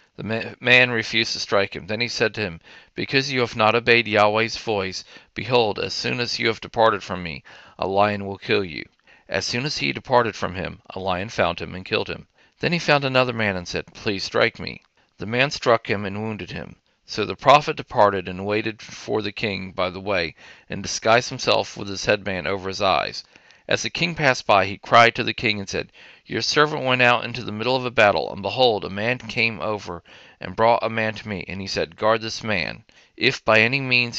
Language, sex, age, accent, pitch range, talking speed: English, male, 40-59, American, 100-120 Hz, 225 wpm